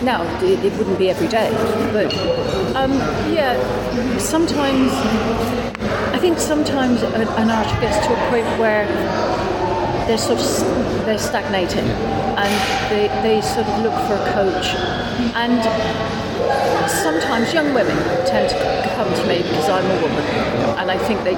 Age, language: 40-59, English